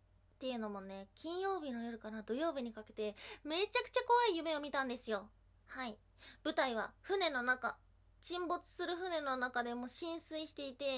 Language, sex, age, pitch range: Japanese, female, 20-39, 240-340 Hz